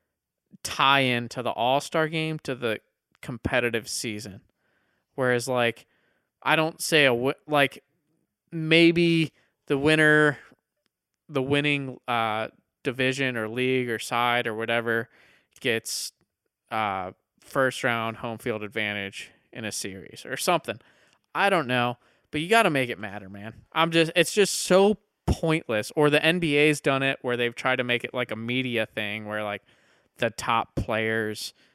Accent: American